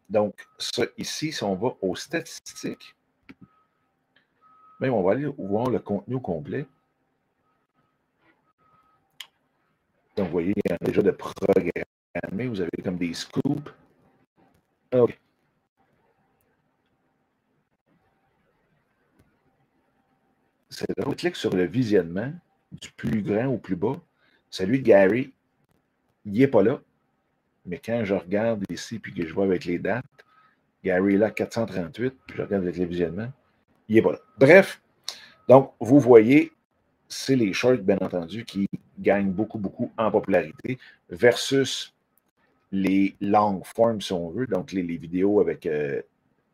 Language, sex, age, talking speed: French, male, 50-69, 135 wpm